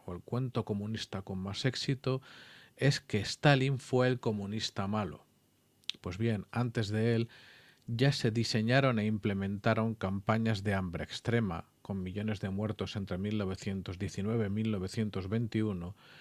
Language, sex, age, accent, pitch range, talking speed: Spanish, male, 40-59, Spanish, 95-120 Hz, 130 wpm